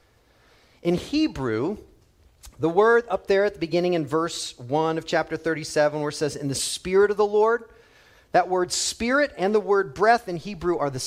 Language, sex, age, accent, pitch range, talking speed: English, male, 40-59, American, 175-285 Hz, 190 wpm